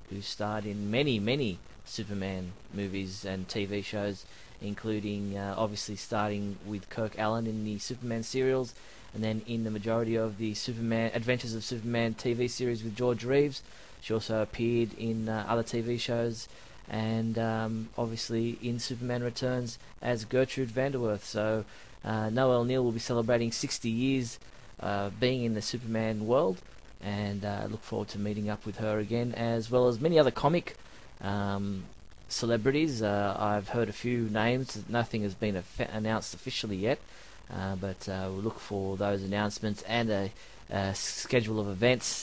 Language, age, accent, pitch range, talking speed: English, 20-39, Australian, 105-120 Hz, 165 wpm